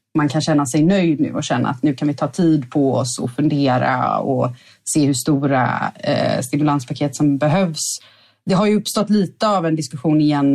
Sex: female